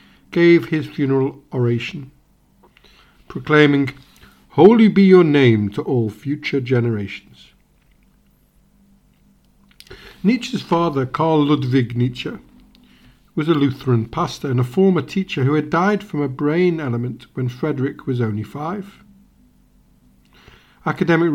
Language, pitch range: English, 125-170 Hz